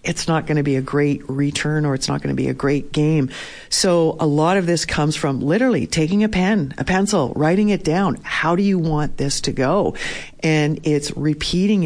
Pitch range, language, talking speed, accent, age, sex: 145-170 Hz, English, 220 wpm, American, 50-69, female